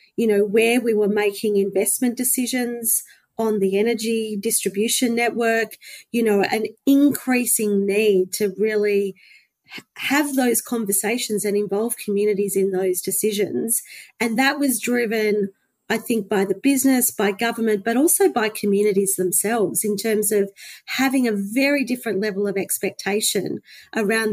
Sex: female